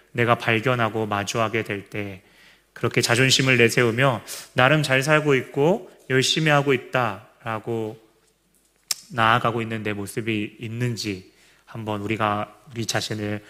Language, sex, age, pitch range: Korean, male, 30-49, 110-145 Hz